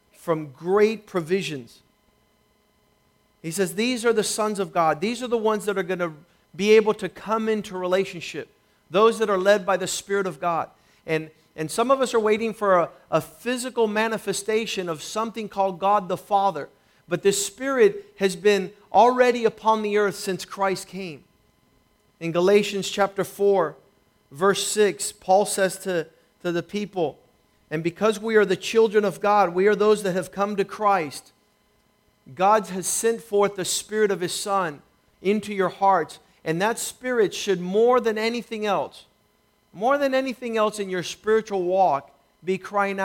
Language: English